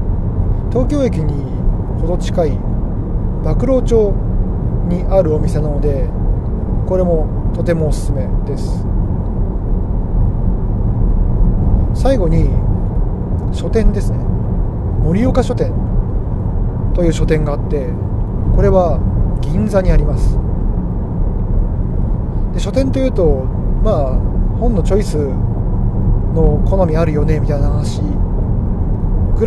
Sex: male